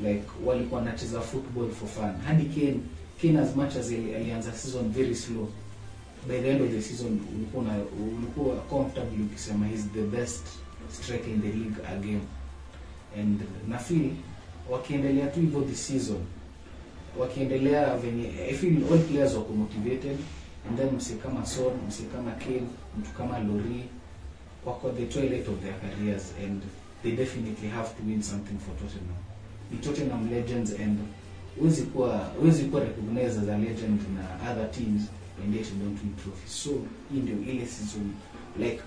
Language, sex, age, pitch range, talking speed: Swahili, male, 30-49, 100-125 Hz, 155 wpm